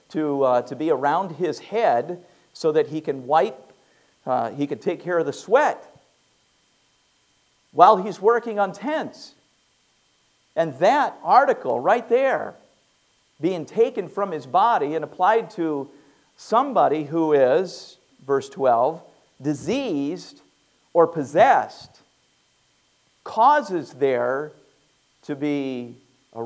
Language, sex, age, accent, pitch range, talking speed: English, male, 50-69, American, 130-185 Hz, 115 wpm